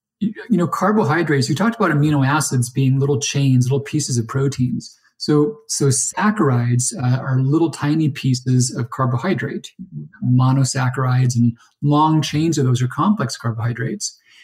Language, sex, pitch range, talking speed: English, male, 130-160 Hz, 150 wpm